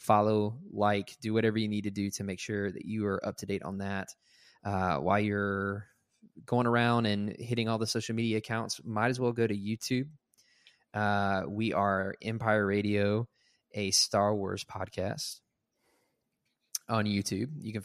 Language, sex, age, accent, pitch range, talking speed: English, male, 20-39, American, 100-115 Hz, 170 wpm